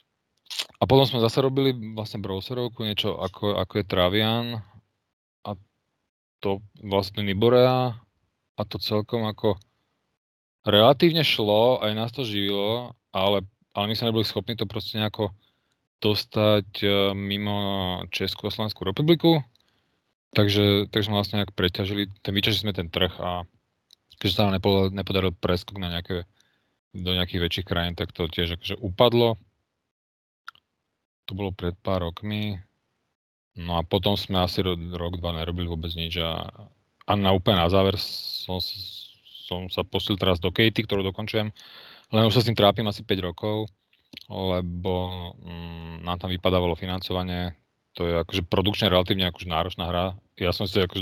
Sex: male